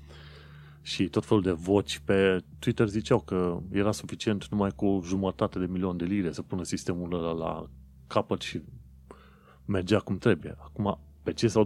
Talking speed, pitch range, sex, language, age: 170 wpm, 85-105 Hz, male, Romanian, 30-49